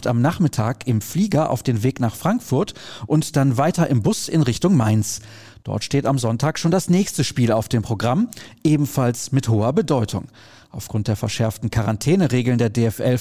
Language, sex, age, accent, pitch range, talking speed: German, male, 40-59, German, 115-160 Hz, 175 wpm